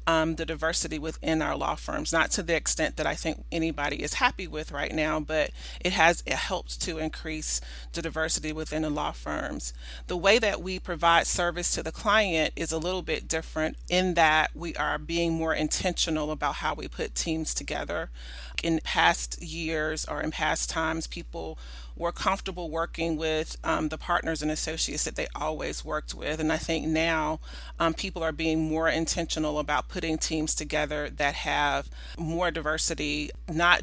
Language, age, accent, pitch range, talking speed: English, 30-49, American, 150-165 Hz, 180 wpm